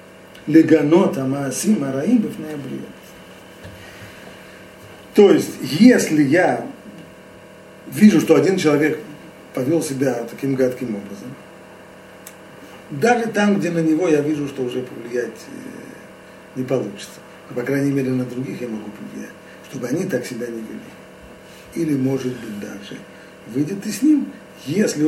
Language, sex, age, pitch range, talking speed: Russian, male, 50-69, 125-160 Hz, 125 wpm